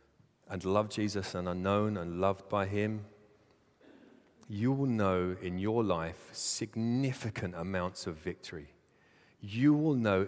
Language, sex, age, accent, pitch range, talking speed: English, male, 30-49, British, 95-125 Hz, 135 wpm